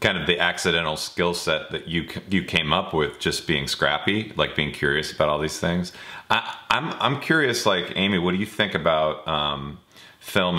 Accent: American